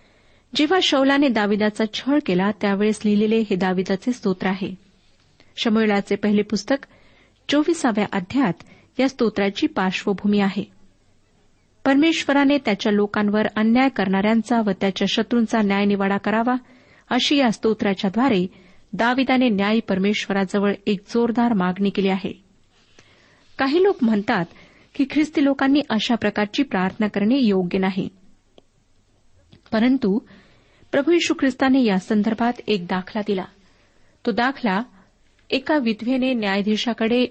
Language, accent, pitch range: Marathi, native, 200-260 Hz